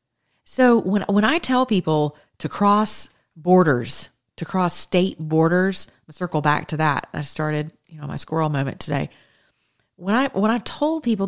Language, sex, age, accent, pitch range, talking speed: English, female, 40-59, American, 145-200 Hz, 170 wpm